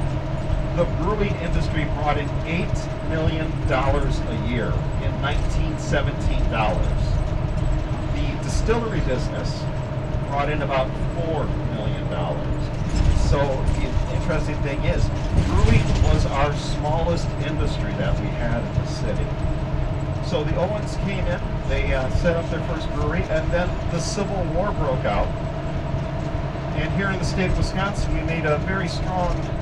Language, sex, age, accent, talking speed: English, male, 50-69, American, 135 wpm